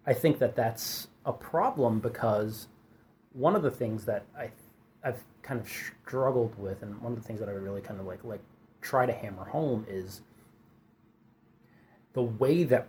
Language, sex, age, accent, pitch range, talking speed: English, male, 30-49, American, 110-125 Hz, 180 wpm